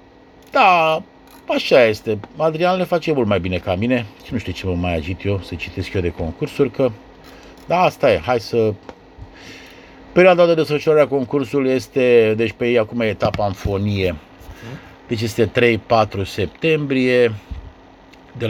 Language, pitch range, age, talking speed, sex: Romanian, 105-140 Hz, 50-69, 150 wpm, male